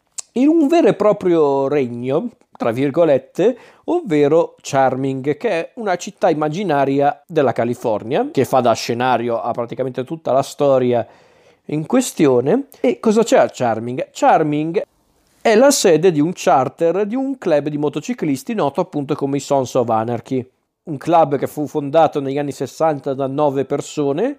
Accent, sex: native, male